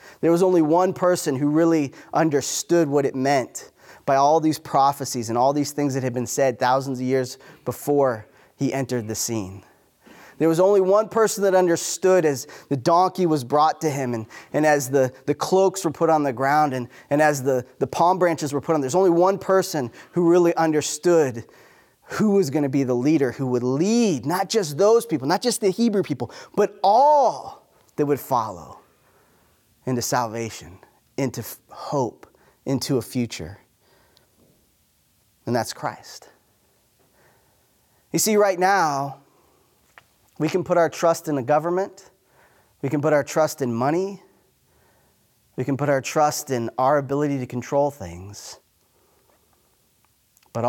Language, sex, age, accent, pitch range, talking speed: English, male, 20-39, American, 130-170 Hz, 165 wpm